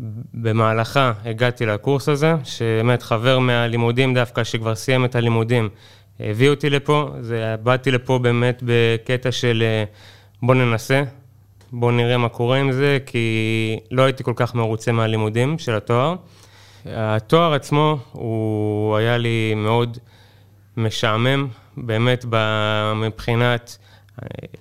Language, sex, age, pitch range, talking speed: Hebrew, male, 20-39, 110-130 Hz, 115 wpm